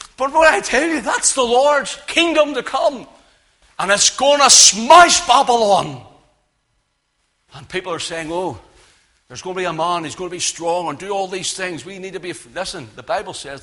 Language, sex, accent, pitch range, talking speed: English, male, British, 110-165 Hz, 205 wpm